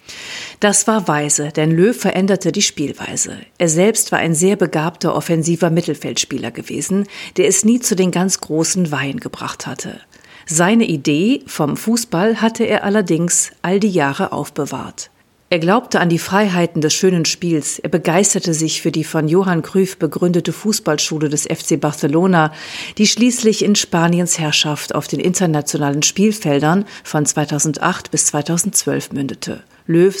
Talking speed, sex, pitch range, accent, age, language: 145 wpm, female, 155-195 Hz, German, 50-69, German